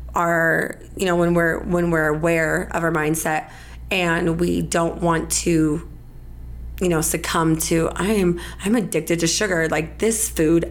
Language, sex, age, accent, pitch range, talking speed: English, female, 20-39, American, 160-185 Hz, 155 wpm